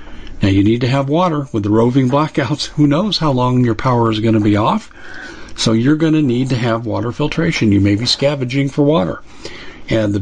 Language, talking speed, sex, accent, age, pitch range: English, 225 wpm, male, American, 50-69, 110-145 Hz